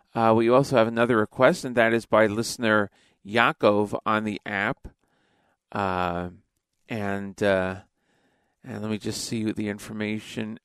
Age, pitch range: 40-59, 105-120 Hz